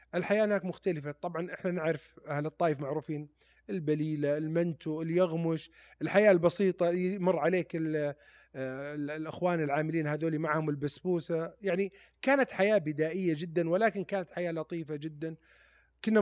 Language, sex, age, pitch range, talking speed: Arabic, male, 30-49, 145-180 Hz, 120 wpm